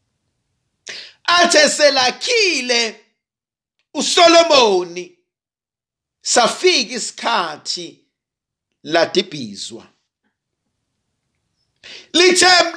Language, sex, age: English, male, 50-69